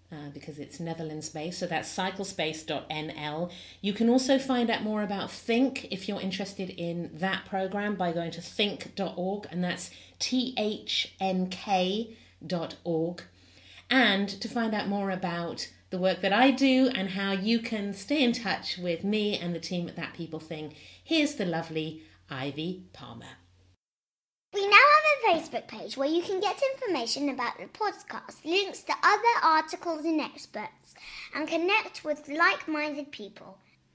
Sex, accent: female, British